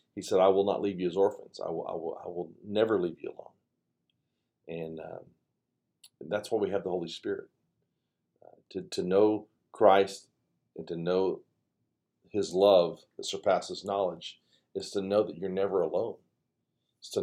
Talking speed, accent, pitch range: 180 wpm, American, 100-150 Hz